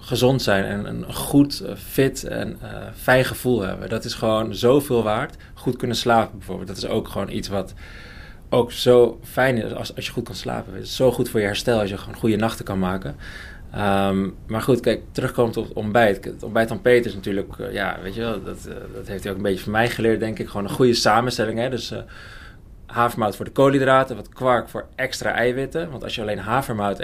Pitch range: 100-120 Hz